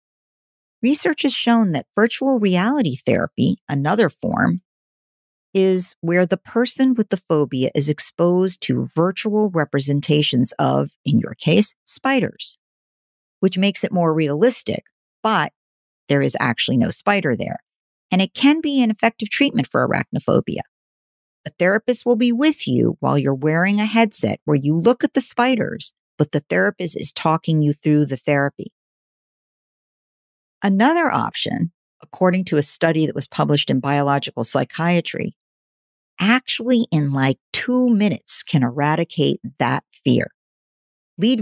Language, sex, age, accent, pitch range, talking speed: English, female, 50-69, American, 150-225 Hz, 140 wpm